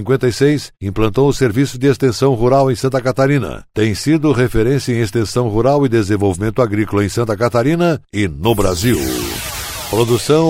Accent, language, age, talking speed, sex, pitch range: Brazilian, Portuguese, 60-79, 150 wpm, male, 110-135 Hz